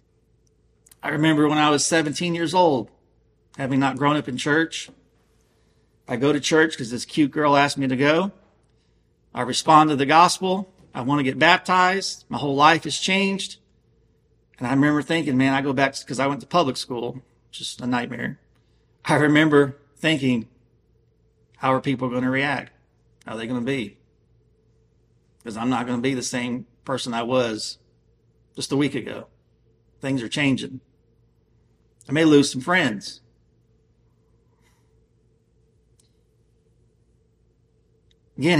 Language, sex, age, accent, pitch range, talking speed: English, male, 40-59, American, 115-160 Hz, 150 wpm